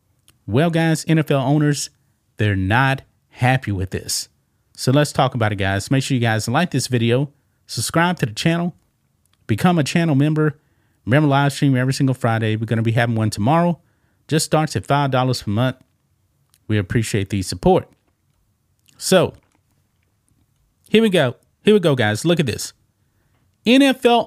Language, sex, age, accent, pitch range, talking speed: English, male, 30-49, American, 105-150 Hz, 160 wpm